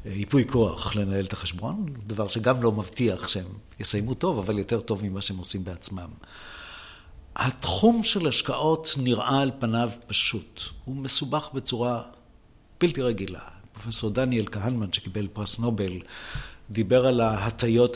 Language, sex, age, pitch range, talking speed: Hebrew, male, 50-69, 105-130 Hz, 135 wpm